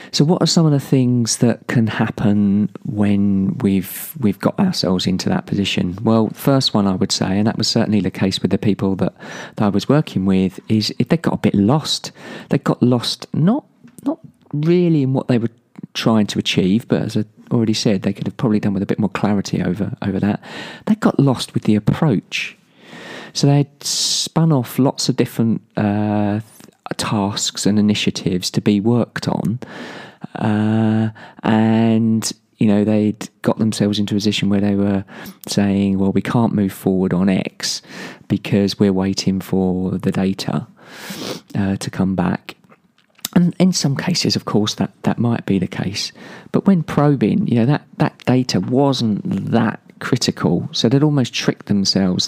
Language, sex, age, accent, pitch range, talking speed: English, male, 40-59, British, 100-140 Hz, 180 wpm